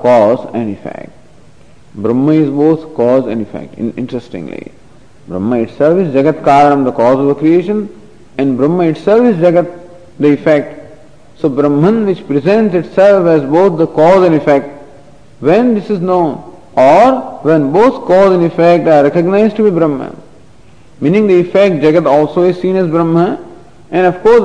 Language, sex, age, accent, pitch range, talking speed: English, male, 50-69, Indian, 135-175 Hz, 160 wpm